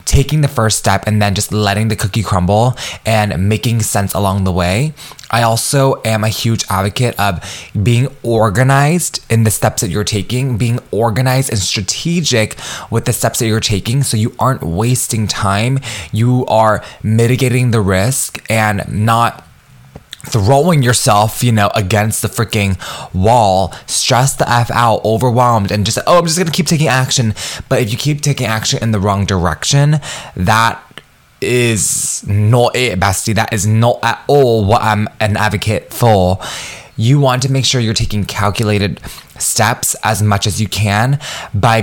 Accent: American